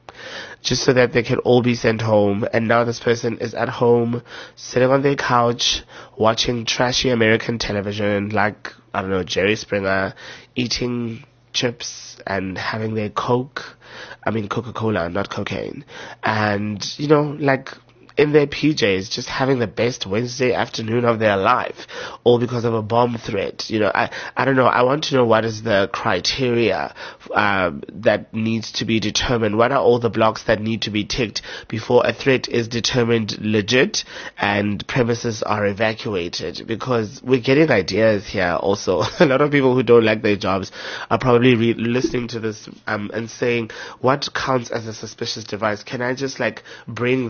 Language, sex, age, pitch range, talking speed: English, male, 20-39, 110-125 Hz, 175 wpm